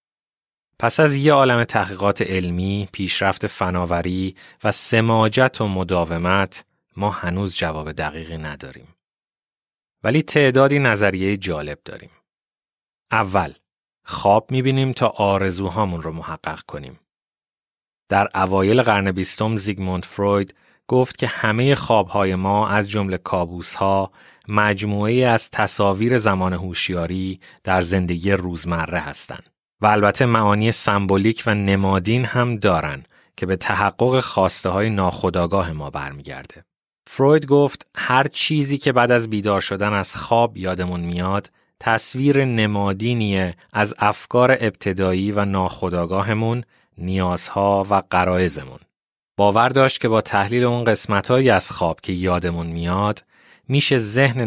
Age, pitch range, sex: 30-49, 95-115 Hz, male